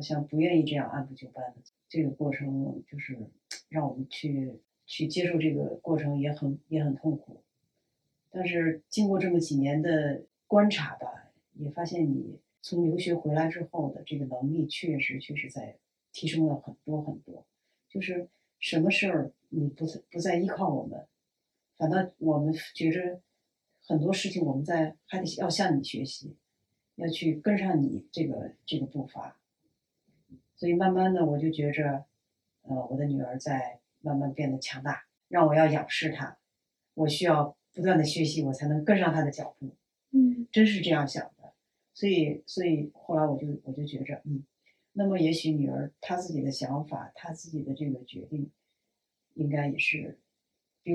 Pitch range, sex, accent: 140-170 Hz, female, native